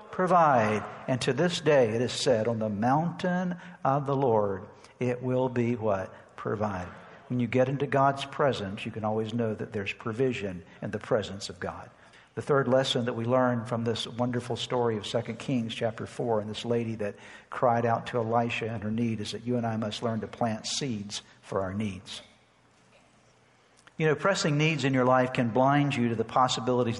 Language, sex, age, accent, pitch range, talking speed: English, male, 60-79, American, 115-135 Hz, 200 wpm